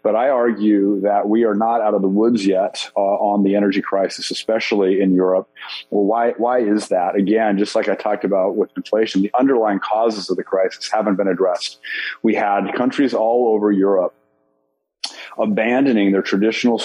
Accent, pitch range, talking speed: American, 95-110 Hz, 180 wpm